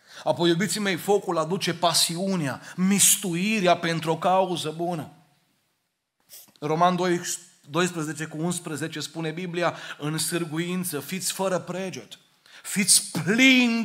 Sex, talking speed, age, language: male, 100 wpm, 30-49, Romanian